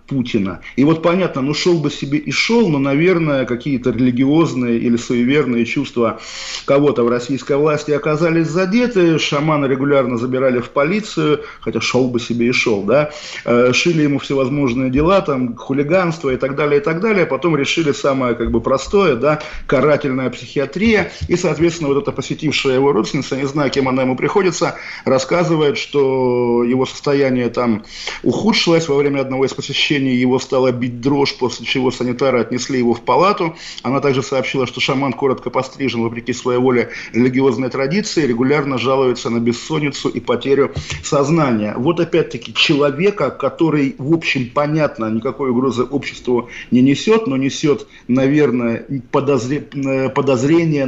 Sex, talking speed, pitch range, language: male, 150 wpm, 125-150 Hz, Russian